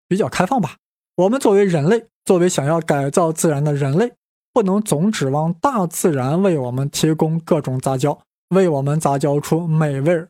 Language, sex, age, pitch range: Chinese, male, 20-39, 150-205 Hz